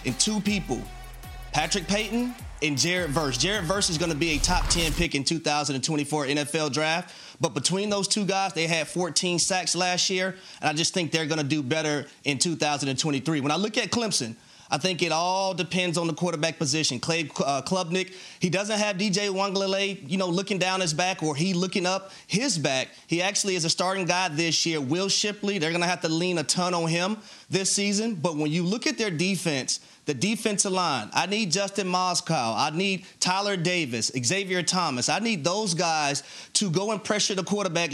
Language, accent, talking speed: English, American, 205 wpm